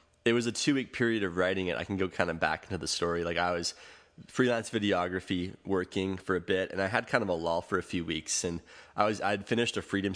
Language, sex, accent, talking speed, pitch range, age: English, male, American, 265 wpm, 90-110 Hz, 20-39